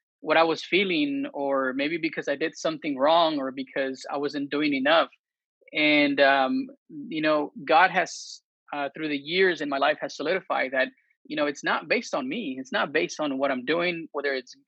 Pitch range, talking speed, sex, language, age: 140-230 Hz, 200 wpm, male, English, 20-39